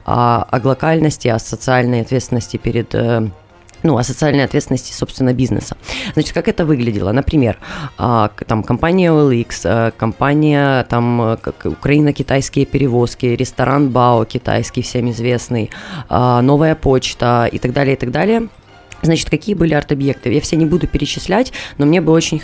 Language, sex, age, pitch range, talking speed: Russian, female, 20-39, 125-160 Hz, 135 wpm